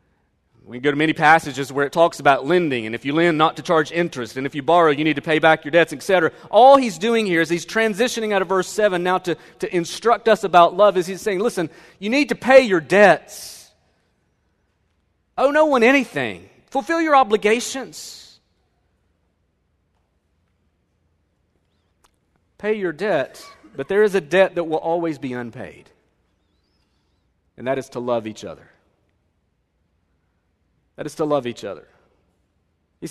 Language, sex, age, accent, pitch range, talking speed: English, male, 40-59, American, 115-185 Hz, 165 wpm